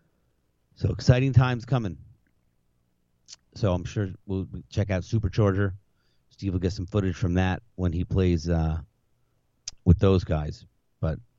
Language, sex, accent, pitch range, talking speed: English, male, American, 85-100 Hz, 135 wpm